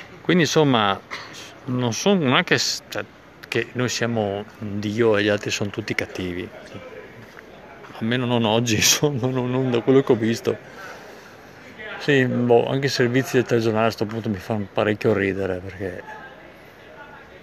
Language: Italian